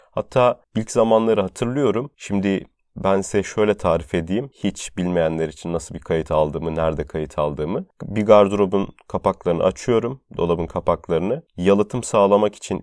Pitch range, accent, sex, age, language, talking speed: 85-105 Hz, native, male, 30-49, Turkish, 135 wpm